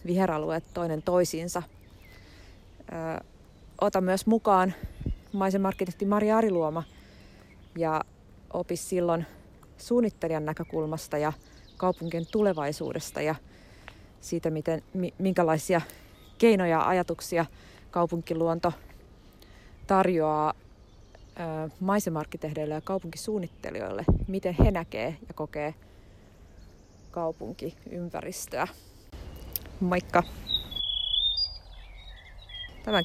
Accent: native